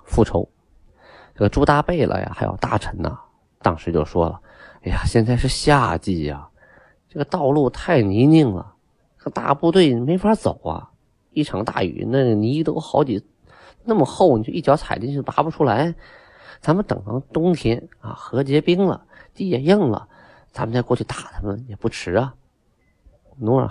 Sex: male